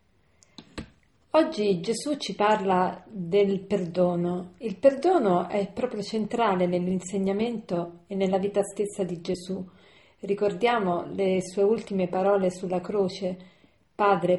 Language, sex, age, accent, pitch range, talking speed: Italian, female, 40-59, native, 180-205 Hz, 110 wpm